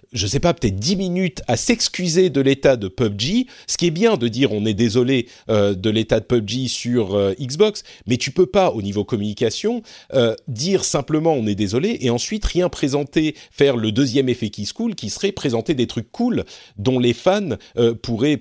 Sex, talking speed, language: male, 200 wpm, French